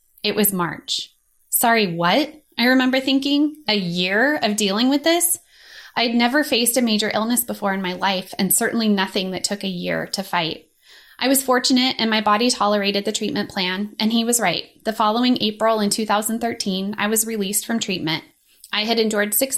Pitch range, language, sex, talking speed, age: 195-235 Hz, English, female, 185 wpm, 20-39